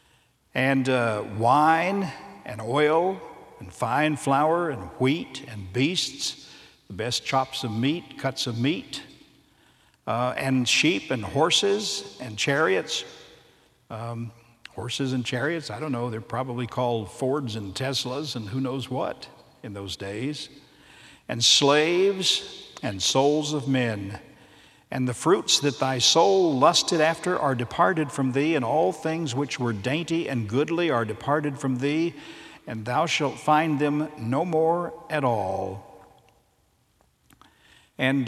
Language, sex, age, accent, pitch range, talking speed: English, male, 60-79, American, 120-150 Hz, 135 wpm